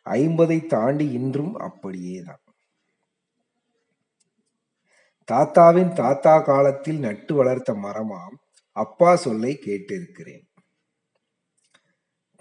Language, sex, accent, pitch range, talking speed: Tamil, male, native, 130-175 Hz, 65 wpm